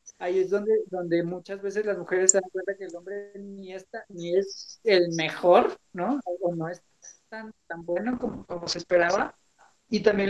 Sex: male